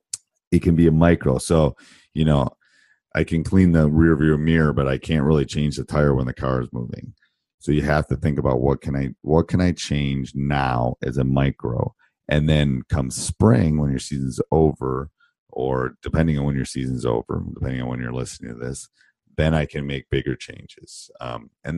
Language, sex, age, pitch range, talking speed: English, male, 40-59, 65-80 Hz, 205 wpm